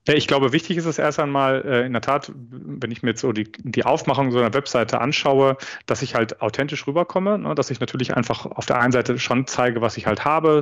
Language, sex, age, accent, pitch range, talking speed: German, male, 40-59, German, 120-145 Hz, 230 wpm